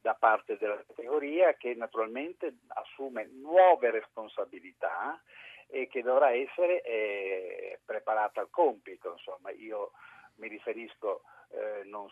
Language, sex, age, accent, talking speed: Italian, male, 50-69, native, 115 wpm